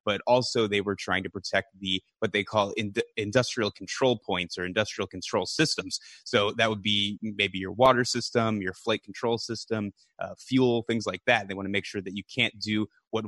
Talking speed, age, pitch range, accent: 205 wpm, 20-39, 95-120 Hz, American